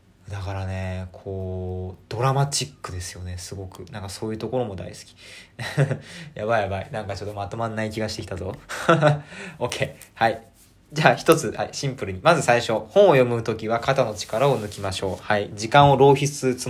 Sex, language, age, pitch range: male, Japanese, 20-39, 100-140 Hz